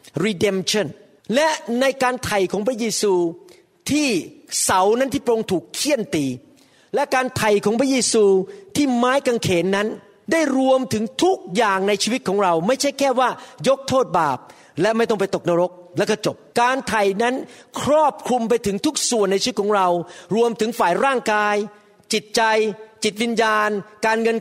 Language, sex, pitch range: Thai, male, 190-245 Hz